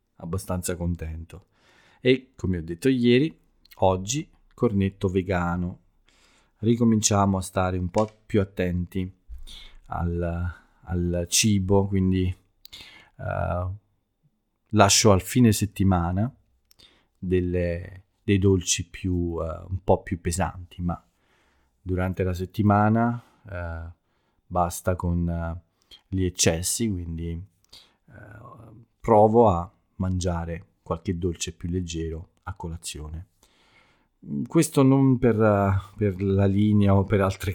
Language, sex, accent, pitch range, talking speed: Italian, male, native, 85-100 Hz, 100 wpm